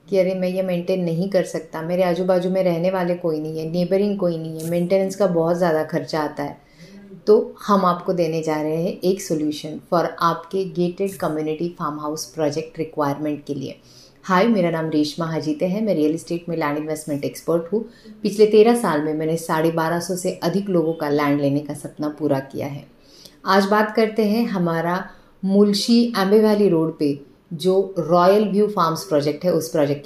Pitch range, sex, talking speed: 155-195 Hz, female, 190 wpm